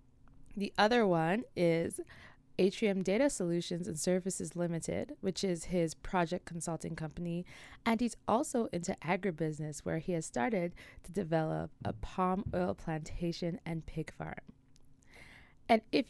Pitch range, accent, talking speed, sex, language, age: 165-205 Hz, American, 135 wpm, female, English, 20-39